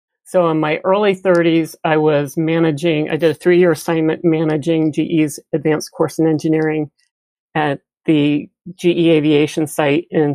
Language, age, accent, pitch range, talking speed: English, 50-69, American, 165-205 Hz, 145 wpm